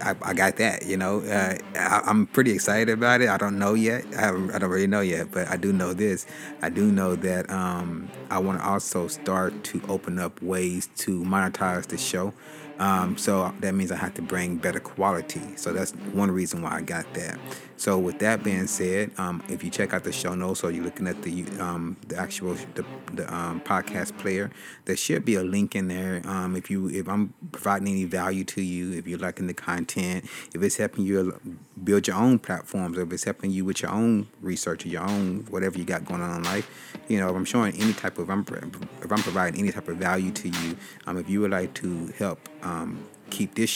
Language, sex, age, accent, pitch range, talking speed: English, male, 30-49, American, 90-100 Hz, 230 wpm